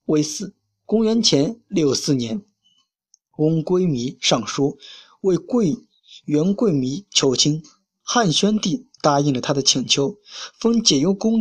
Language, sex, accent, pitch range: Chinese, male, native, 150-210 Hz